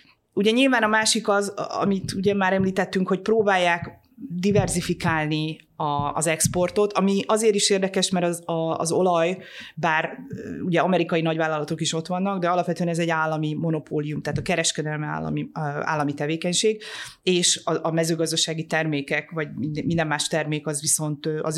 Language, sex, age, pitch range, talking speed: Hungarian, female, 30-49, 155-190 Hz, 140 wpm